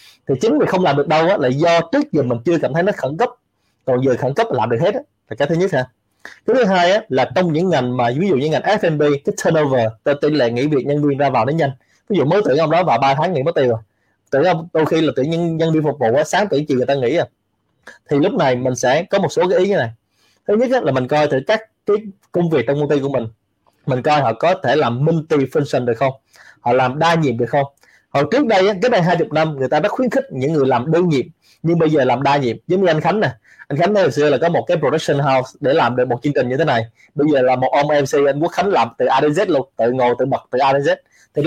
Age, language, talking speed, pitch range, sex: 20-39, Vietnamese, 285 wpm, 130-170 Hz, male